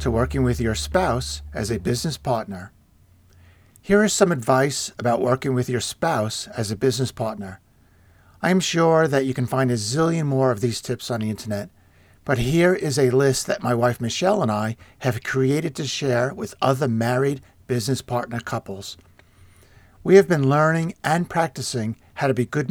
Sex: male